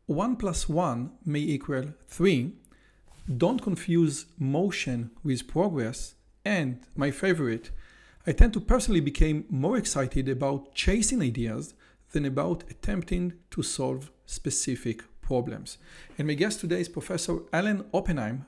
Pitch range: 140-190 Hz